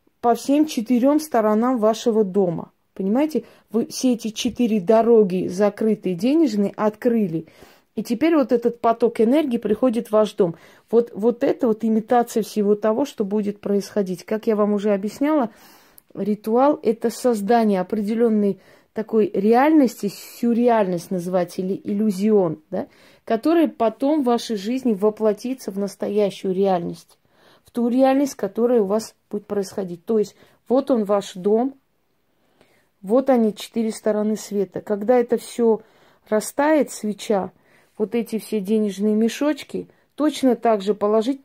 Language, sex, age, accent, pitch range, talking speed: Russian, female, 30-49, native, 205-240 Hz, 135 wpm